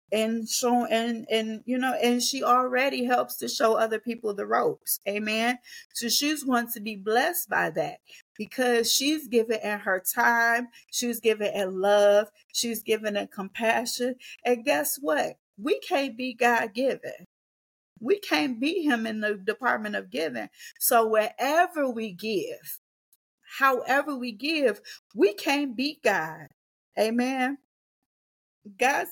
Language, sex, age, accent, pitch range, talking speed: English, female, 40-59, American, 195-255 Hz, 140 wpm